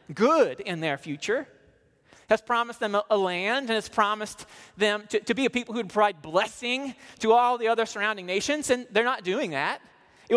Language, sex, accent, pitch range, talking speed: English, male, American, 180-245 Hz, 195 wpm